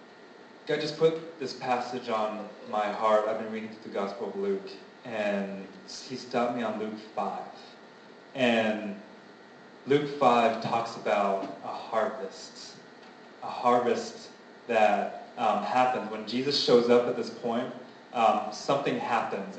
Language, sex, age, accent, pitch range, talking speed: English, male, 30-49, American, 110-130 Hz, 140 wpm